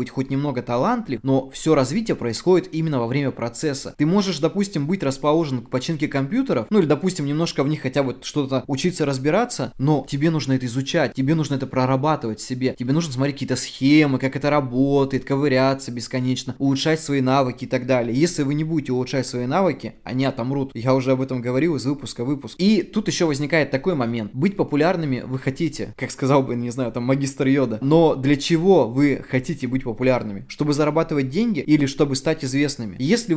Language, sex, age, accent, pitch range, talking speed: Russian, male, 20-39, native, 130-155 Hz, 200 wpm